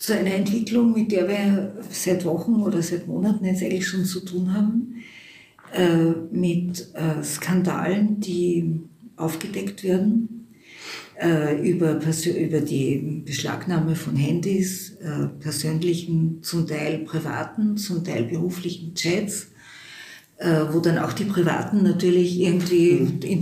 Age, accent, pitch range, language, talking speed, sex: 50-69, Austrian, 170-200 Hz, German, 125 wpm, female